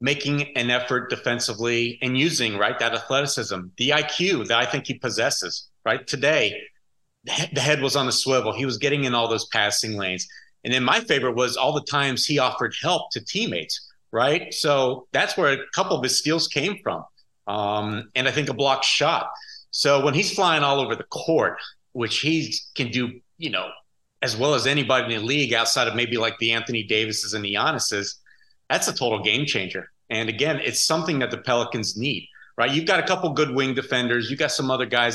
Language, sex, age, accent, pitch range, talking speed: English, male, 30-49, American, 115-140 Hz, 205 wpm